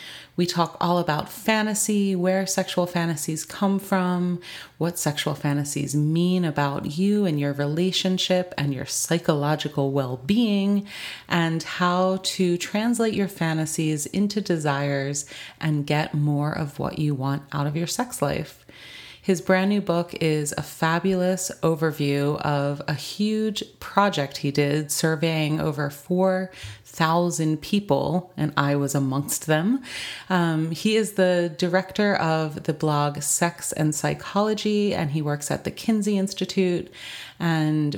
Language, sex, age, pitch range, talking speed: English, female, 30-49, 150-190 Hz, 135 wpm